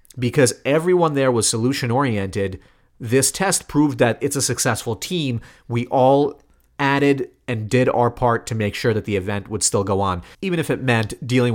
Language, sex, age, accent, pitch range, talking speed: English, male, 30-49, American, 115-145 Hz, 180 wpm